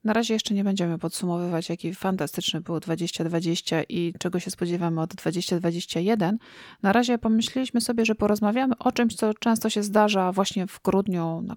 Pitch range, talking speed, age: 170-215 Hz, 165 wpm, 30-49